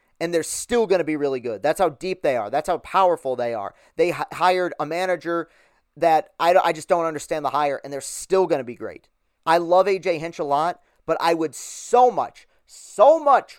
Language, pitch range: English, 130-170 Hz